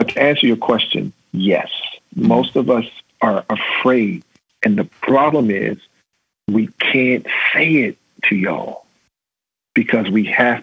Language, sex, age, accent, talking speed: English, male, 50-69, American, 135 wpm